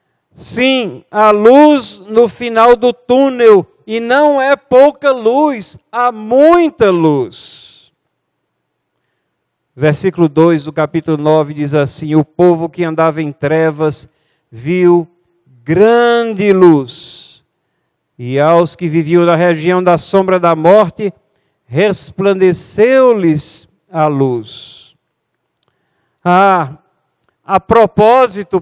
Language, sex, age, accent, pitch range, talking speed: Portuguese, male, 50-69, Brazilian, 165-230 Hz, 100 wpm